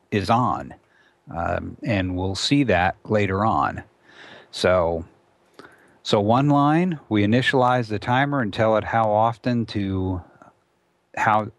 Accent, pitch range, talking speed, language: American, 95-115 Hz, 125 wpm, English